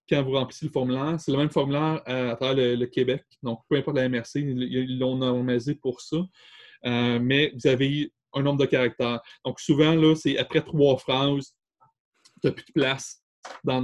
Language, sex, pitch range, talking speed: French, male, 125-145 Hz, 195 wpm